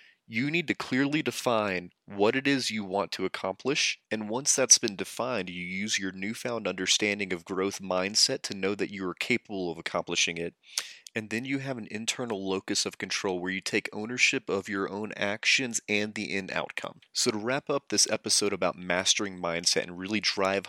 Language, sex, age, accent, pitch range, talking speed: English, male, 30-49, American, 90-110 Hz, 195 wpm